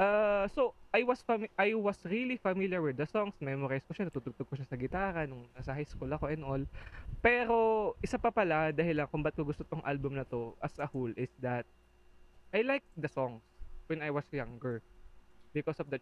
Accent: native